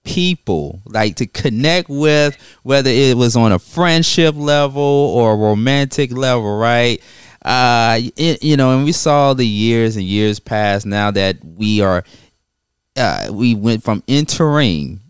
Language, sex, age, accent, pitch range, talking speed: English, male, 30-49, American, 100-130 Hz, 145 wpm